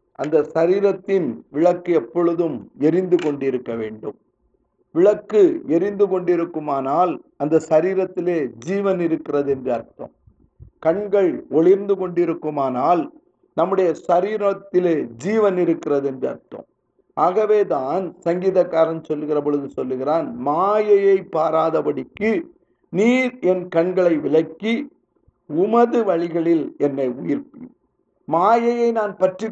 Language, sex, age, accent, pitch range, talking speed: Tamil, male, 50-69, native, 165-215 Hz, 85 wpm